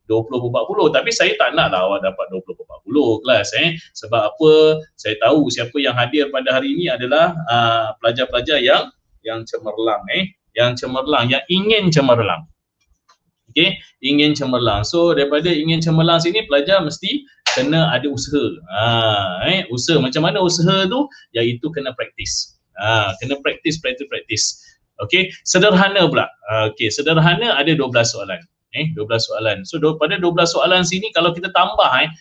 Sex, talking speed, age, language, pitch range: male, 155 wpm, 20-39, Malay, 120-180 Hz